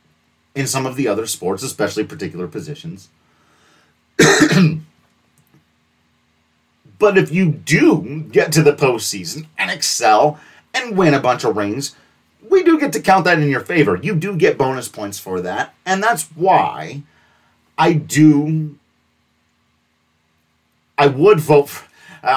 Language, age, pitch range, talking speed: English, 30-49, 105-160 Hz, 135 wpm